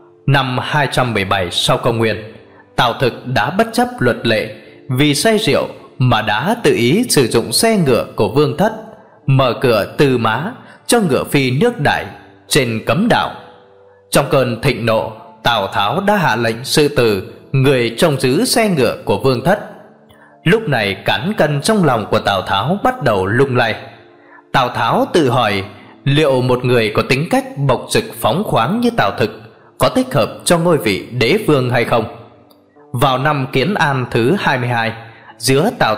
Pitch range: 115-175 Hz